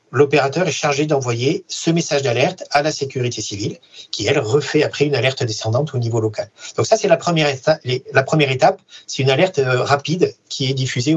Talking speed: 190 wpm